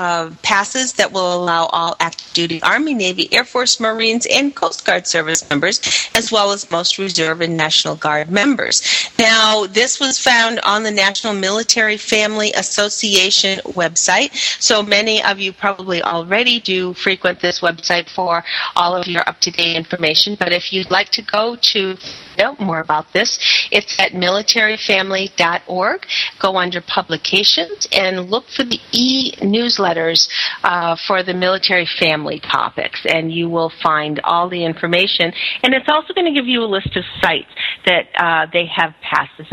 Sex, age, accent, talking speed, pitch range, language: female, 40-59, American, 160 wpm, 175-230 Hz, English